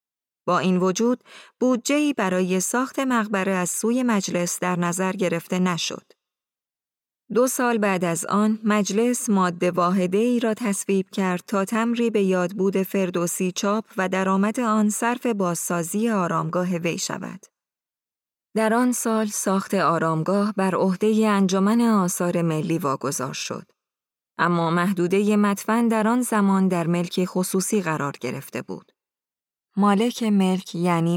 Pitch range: 175-215 Hz